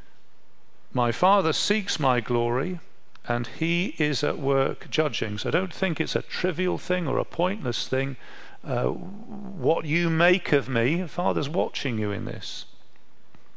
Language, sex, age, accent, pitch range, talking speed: English, male, 40-59, British, 120-170 Hz, 150 wpm